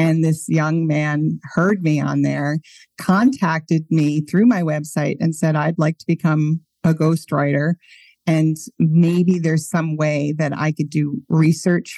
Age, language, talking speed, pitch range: 40-59, English, 155 wpm, 160-210 Hz